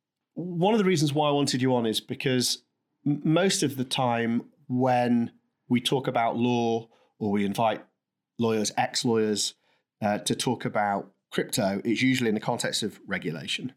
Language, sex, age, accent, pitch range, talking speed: English, male, 30-49, British, 105-130 Hz, 165 wpm